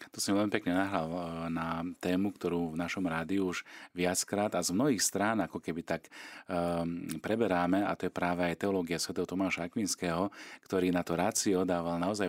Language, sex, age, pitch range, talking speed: Slovak, male, 40-59, 90-110 Hz, 175 wpm